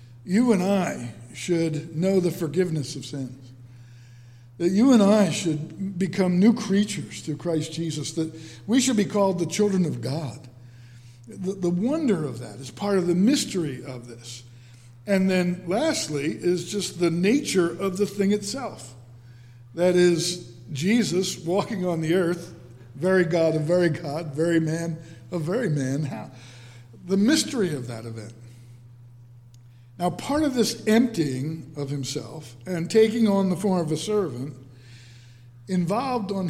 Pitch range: 120-185 Hz